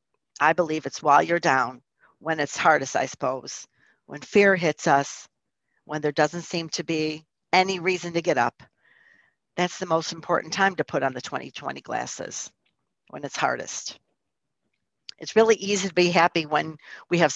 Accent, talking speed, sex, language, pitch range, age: American, 170 wpm, female, English, 155-200 Hz, 50-69